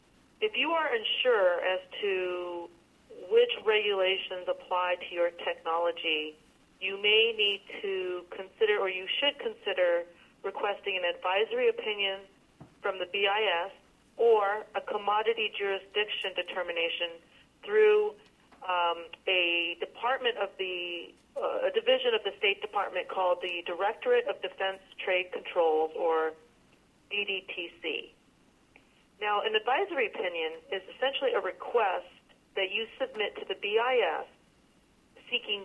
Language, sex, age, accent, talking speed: English, female, 40-59, American, 120 wpm